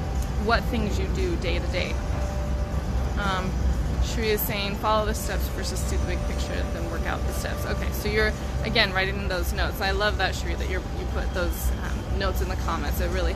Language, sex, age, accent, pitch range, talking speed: English, female, 20-39, American, 65-80 Hz, 205 wpm